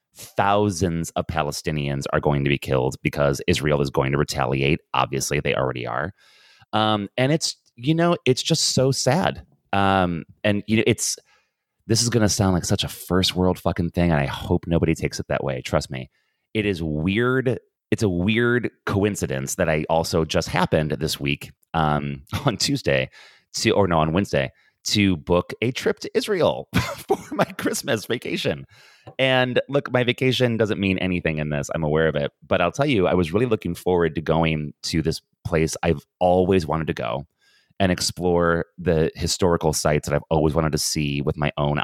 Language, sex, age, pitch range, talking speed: English, male, 30-49, 75-105 Hz, 190 wpm